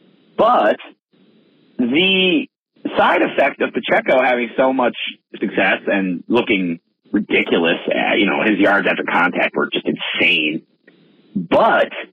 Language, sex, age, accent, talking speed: English, male, 40-59, American, 120 wpm